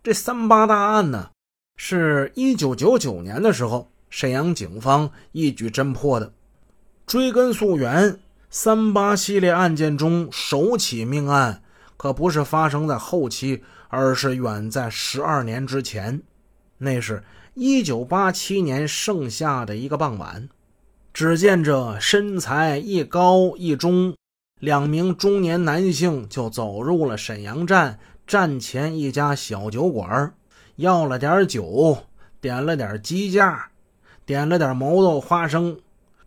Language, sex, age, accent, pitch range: Chinese, male, 20-39, native, 125-175 Hz